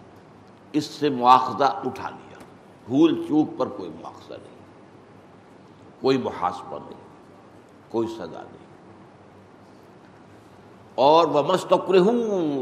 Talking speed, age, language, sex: 95 wpm, 60-79, Urdu, male